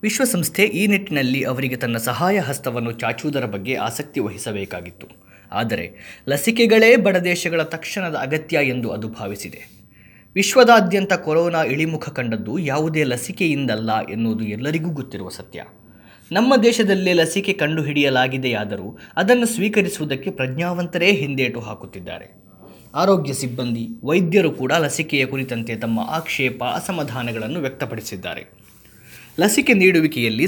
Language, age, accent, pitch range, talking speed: Kannada, 20-39, native, 115-170 Hz, 100 wpm